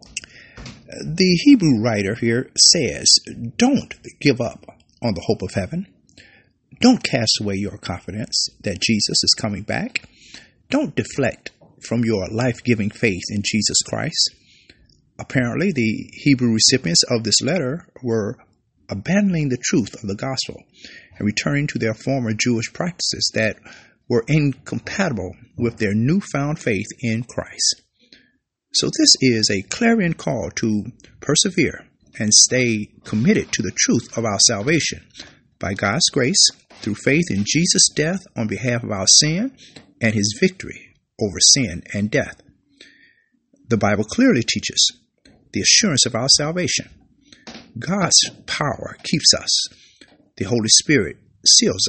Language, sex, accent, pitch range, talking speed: English, male, American, 110-150 Hz, 135 wpm